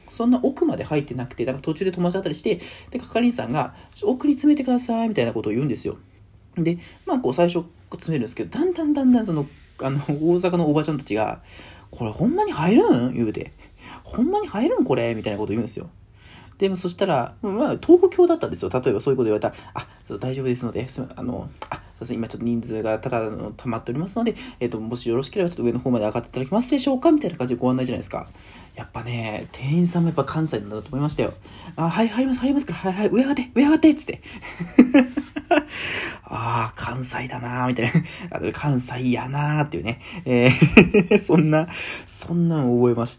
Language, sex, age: Japanese, male, 20-39